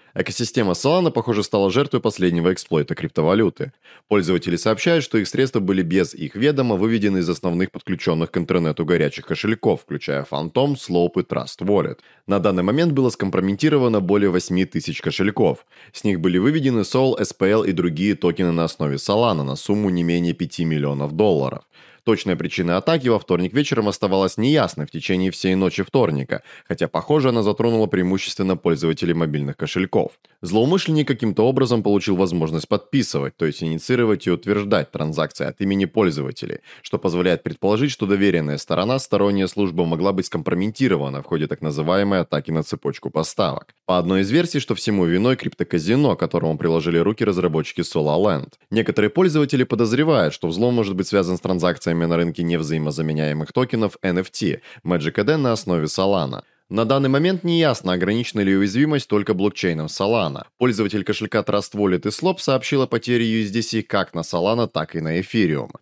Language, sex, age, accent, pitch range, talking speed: Russian, male, 20-39, native, 85-115 Hz, 160 wpm